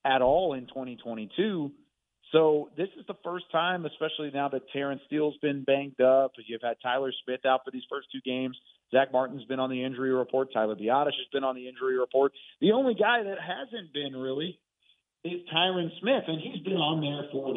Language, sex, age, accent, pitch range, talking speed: English, male, 40-59, American, 120-155 Hz, 200 wpm